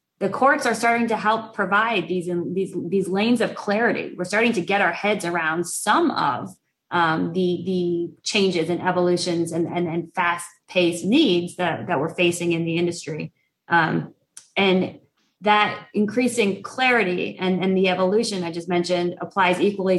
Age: 20-39